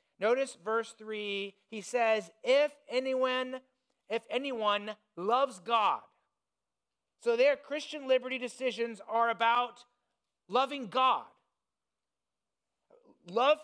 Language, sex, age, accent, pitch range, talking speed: English, male, 30-49, American, 205-250 Hz, 90 wpm